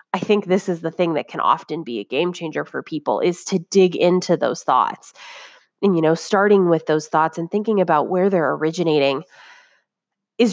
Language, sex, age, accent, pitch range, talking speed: English, female, 20-39, American, 160-200 Hz, 200 wpm